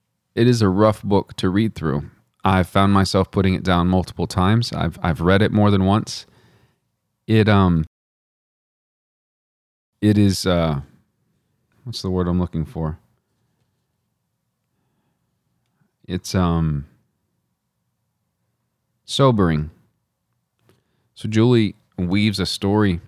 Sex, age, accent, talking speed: male, 40-59, American, 110 wpm